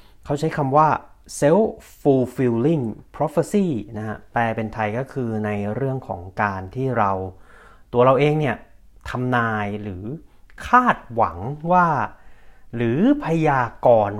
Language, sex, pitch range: Thai, male, 100-150 Hz